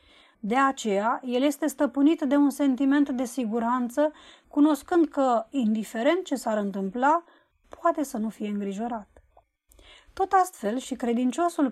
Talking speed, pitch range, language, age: 130 wpm, 225-290 Hz, Romanian, 20-39